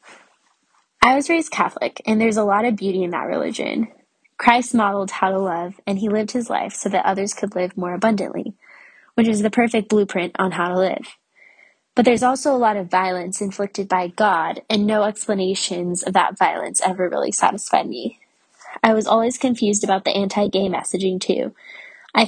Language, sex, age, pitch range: English, female, 10-29, 190-225 Hz